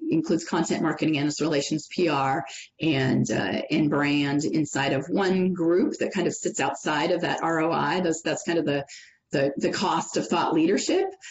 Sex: female